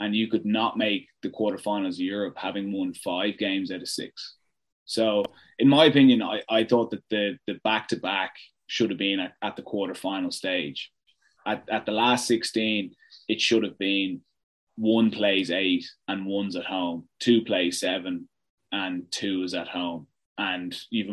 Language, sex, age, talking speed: English, male, 20-39, 180 wpm